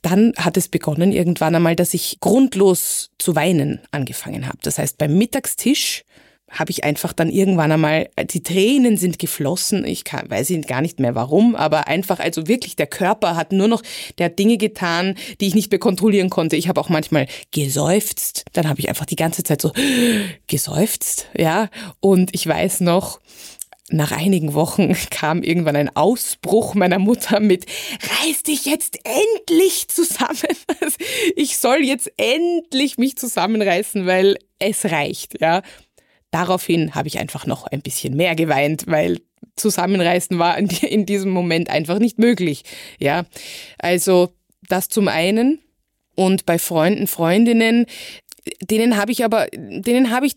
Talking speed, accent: 155 wpm, German